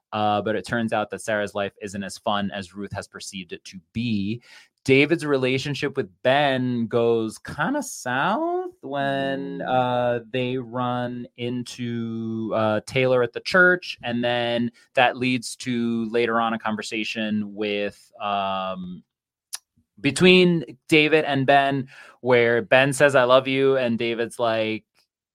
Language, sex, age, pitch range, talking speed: English, male, 20-39, 115-165 Hz, 140 wpm